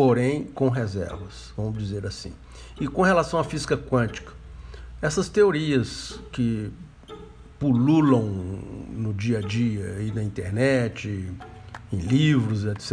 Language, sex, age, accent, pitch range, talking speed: Portuguese, male, 60-79, Brazilian, 115-140 Hz, 125 wpm